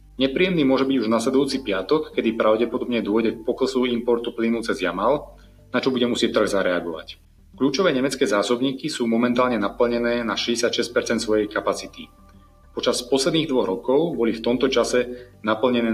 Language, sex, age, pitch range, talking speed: Slovak, male, 30-49, 110-125 Hz, 155 wpm